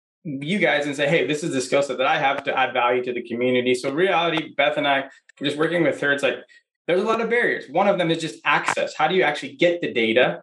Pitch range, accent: 135-170 Hz, American